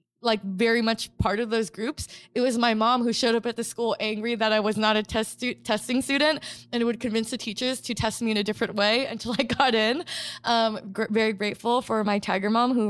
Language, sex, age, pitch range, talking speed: English, female, 20-39, 210-240 Hz, 230 wpm